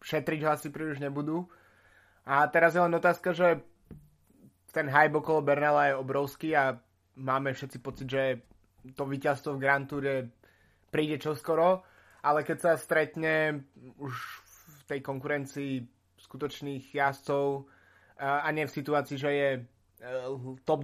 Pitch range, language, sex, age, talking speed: 130-150 Hz, Slovak, male, 20-39, 135 wpm